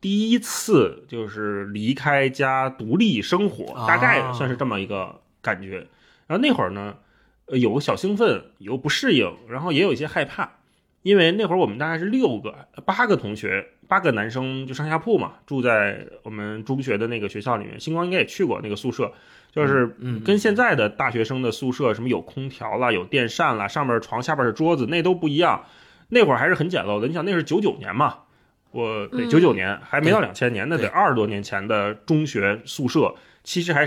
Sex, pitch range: male, 110-160 Hz